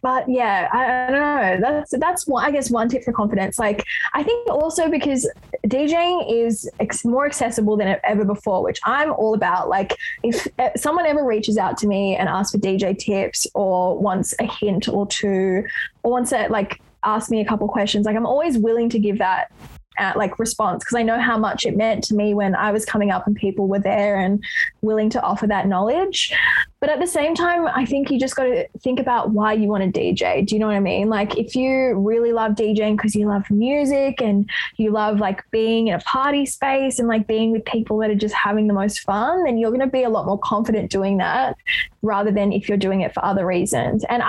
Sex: female